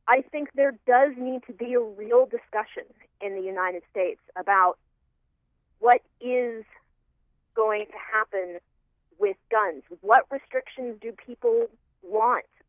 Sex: female